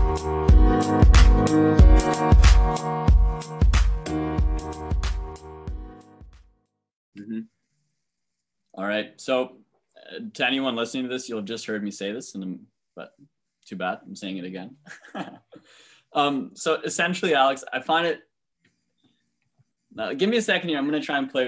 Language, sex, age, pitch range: English, male, 20-39, 85-115 Hz